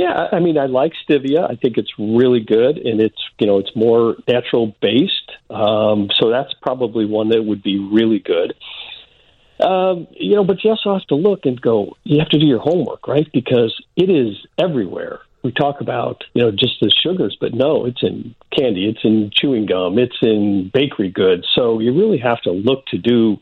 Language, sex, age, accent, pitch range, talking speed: English, male, 50-69, American, 110-145 Hz, 205 wpm